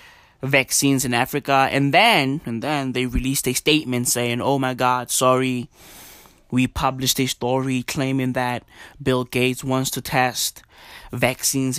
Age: 20-39